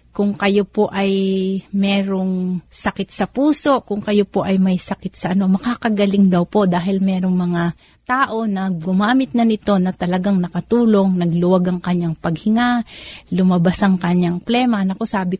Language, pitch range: Filipino, 180-205 Hz